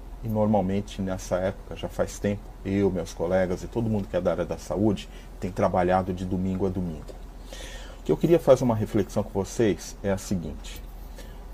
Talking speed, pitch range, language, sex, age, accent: 190 wpm, 90-110 Hz, Portuguese, male, 40-59, Brazilian